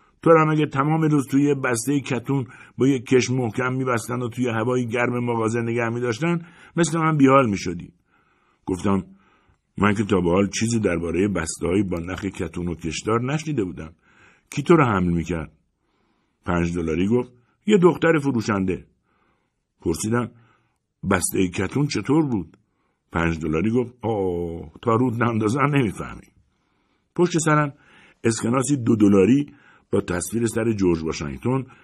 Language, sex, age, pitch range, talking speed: Persian, male, 60-79, 90-135 Hz, 140 wpm